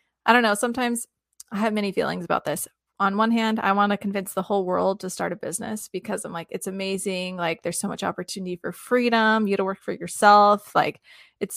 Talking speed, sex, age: 225 wpm, female, 20-39